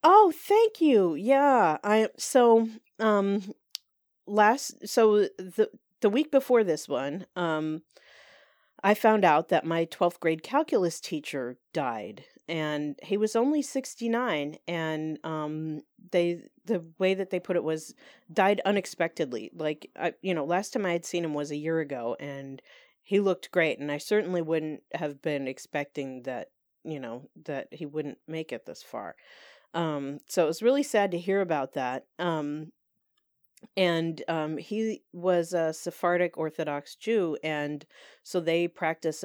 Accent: American